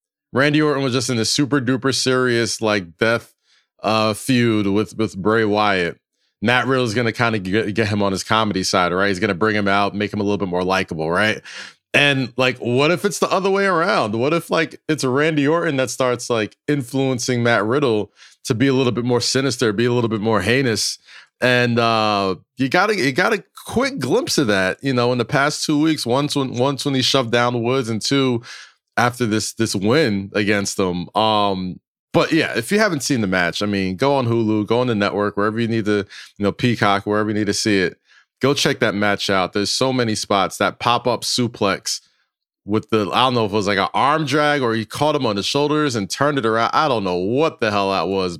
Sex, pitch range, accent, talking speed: male, 100-130 Hz, American, 230 wpm